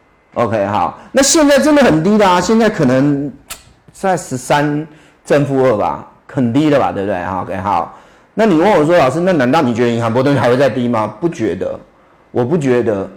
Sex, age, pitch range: male, 30-49, 115-160 Hz